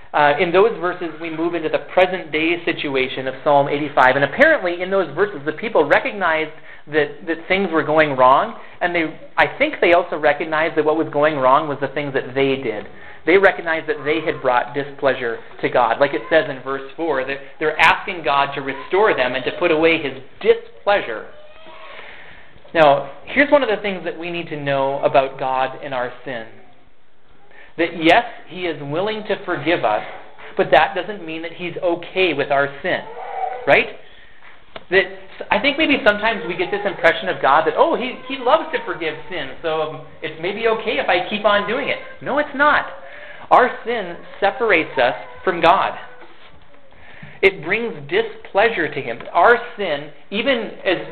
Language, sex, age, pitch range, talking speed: English, male, 30-49, 145-205 Hz, 180 wpm